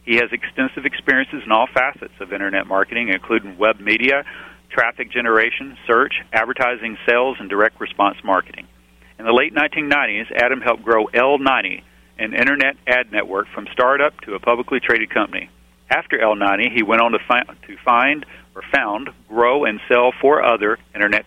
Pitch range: 95-120 Hz